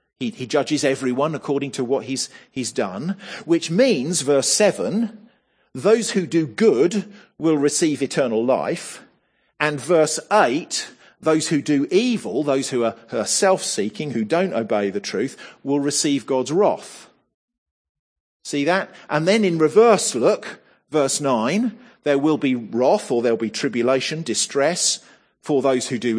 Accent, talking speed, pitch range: British, 150 wpm, 135-190 Hz